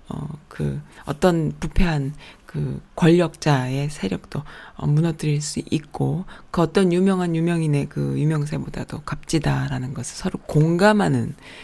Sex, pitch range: female, 145-175 Hz